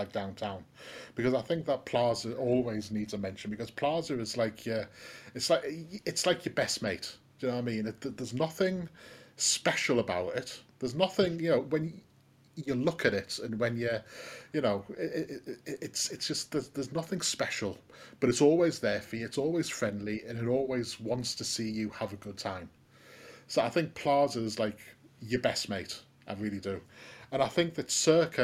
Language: English